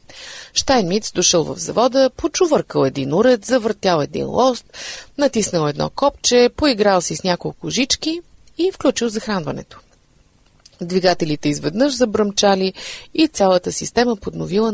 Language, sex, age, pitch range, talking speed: Bulgarian, female, 30-49, 185-260 Hz, 120 wpm